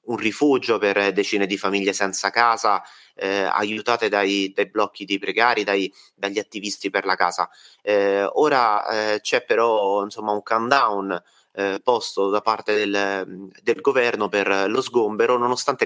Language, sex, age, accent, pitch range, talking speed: Italian, male, 30-49, native, 100-115 Hz, 150 wpm